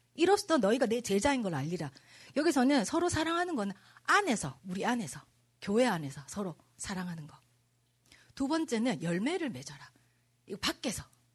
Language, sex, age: Korean, female, 40-59